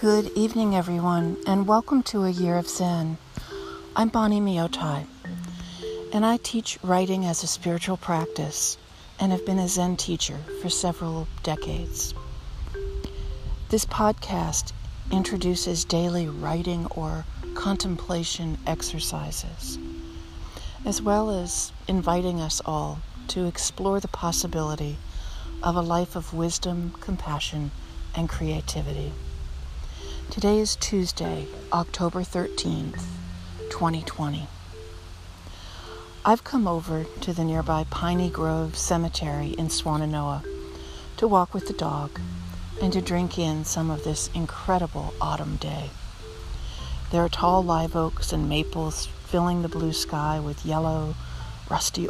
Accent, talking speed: American, 115 wpm